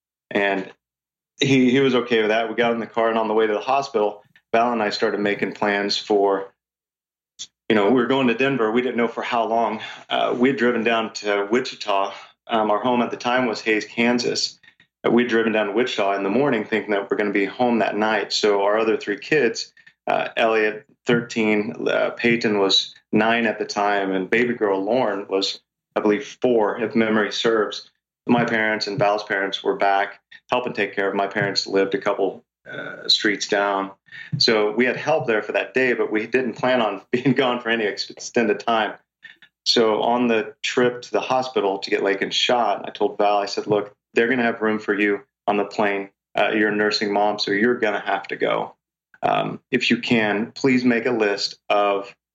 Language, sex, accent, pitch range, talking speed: English, male, American, 100-120 Hz, 210 wpm